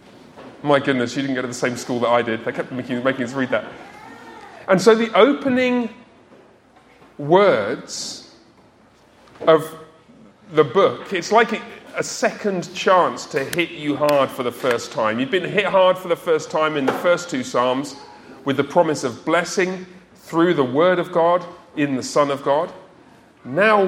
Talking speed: 175 wpm